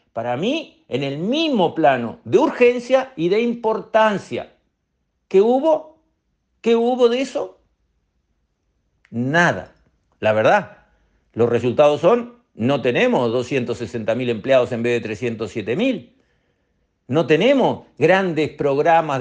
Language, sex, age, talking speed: Spanish, male, 50-69, 115 wpm